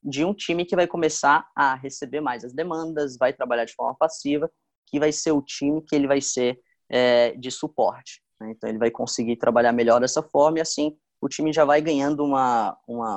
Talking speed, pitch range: 205 wpm, 120-155 Hz